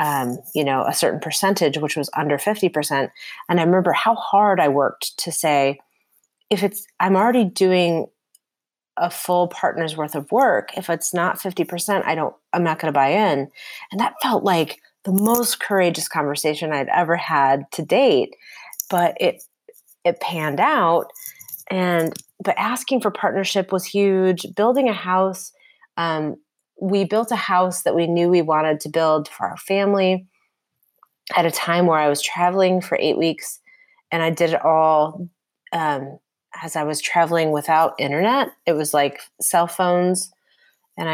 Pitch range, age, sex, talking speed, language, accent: 155-195 Hz, 30-49, female, 165 wpm, English, American